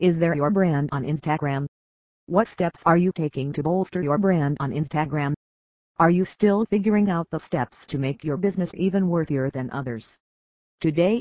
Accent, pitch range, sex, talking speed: American, 135-185 Hz, female, 175 wpm